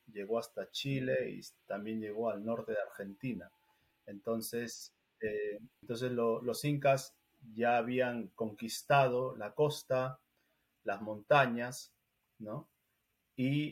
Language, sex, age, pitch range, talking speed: English, male, 30-49, 110-130 Hz, 110 wpm